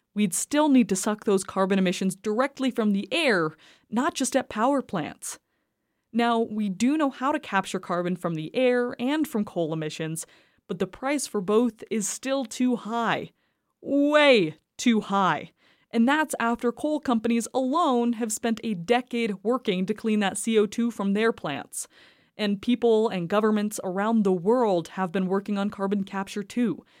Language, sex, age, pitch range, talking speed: English, female, 20-39, 195-245 Hz, 170 wpm